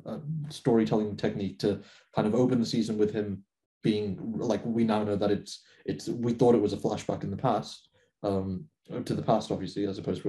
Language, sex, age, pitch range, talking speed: English, male, 20-39, 105-140 Hz, 210 wpm